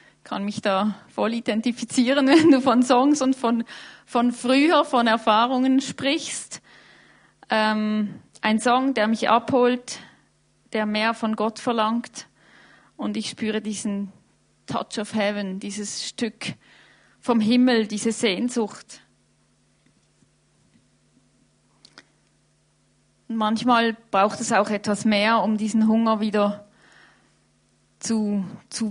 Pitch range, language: 205-240 Hz, German